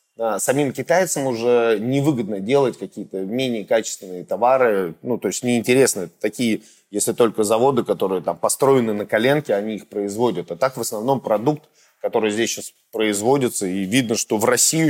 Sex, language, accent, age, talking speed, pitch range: male, Russian, native, 30-49, 155 wpm, 110-135 Hz